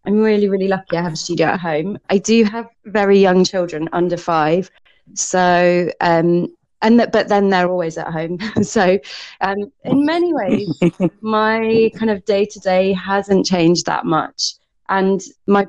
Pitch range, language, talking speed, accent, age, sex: 175-215 Hz, English, 165 wpm, British, 20-39, female